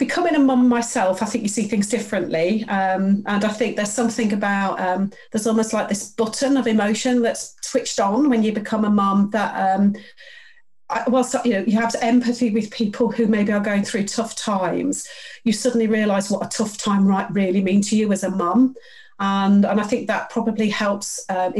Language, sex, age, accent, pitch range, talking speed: English, female, 40-59, British, 200-230 Hz, 205 wpm